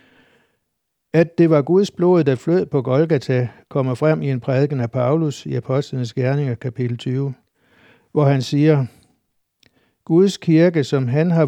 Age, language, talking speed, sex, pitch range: 60-79, Danish, 150 wpm, male, 130-160 Hz